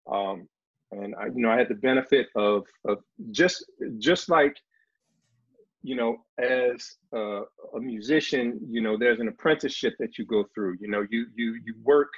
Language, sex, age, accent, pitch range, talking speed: English, male, 40-59, American, 120-175 Hz, 170 wpm